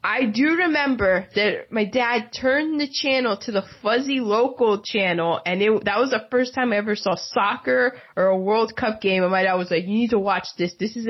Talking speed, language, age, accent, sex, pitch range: 220 wpm, English, 20-39, American, female, 180-255 Hz